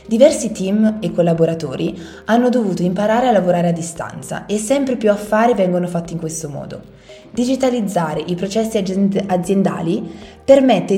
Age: 20-39